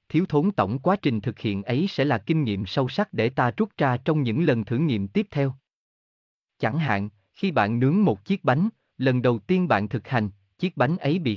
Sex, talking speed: male, 225 wpm